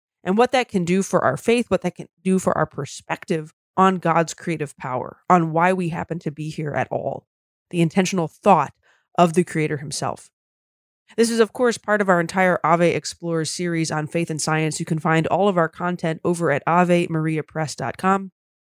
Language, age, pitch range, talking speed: English, 20-39, 160-195 Hz, 195 wpm